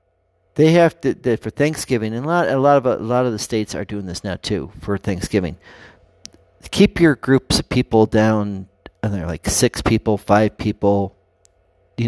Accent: American